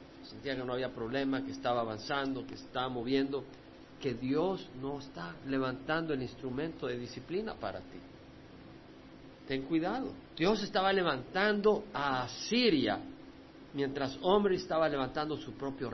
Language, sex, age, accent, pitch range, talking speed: Spanish, male, 50-69, Mexican, 130-185 Hz, 130 wpm